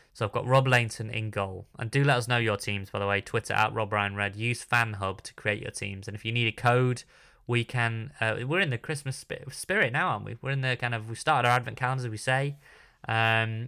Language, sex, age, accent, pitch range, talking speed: English, male, 20-39, British, 110-145 Hz, 270 wpm